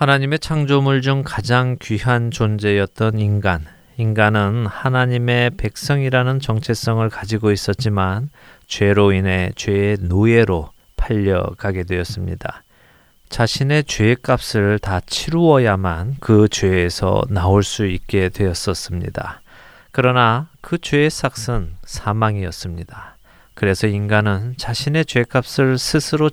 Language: Korean